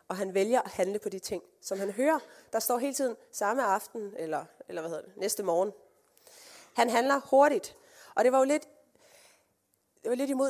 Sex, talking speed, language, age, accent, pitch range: female, 205 wpm, Danish, 20-39, native, 190-250 Hz